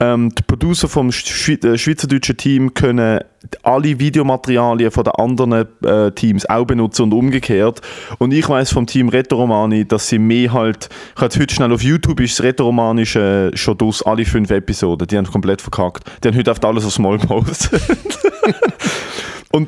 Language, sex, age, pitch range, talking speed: German, male, 20-39, 115-160 Hz, 170 wpm